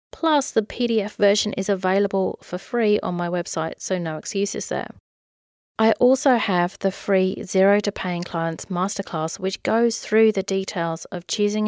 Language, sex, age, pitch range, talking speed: English, female, 30-49, 175-215 Hz, 165 wpm